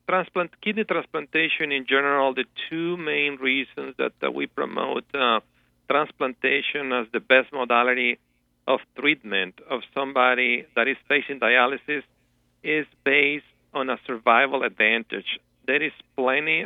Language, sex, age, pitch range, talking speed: English, male, 50-69, 115-140 Hz, 130 wpm